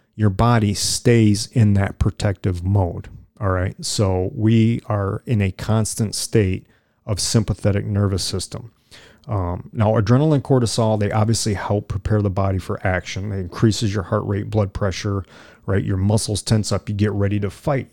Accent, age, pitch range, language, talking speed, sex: American, 40-59, 100-115 Hz, English, 165 wpm, male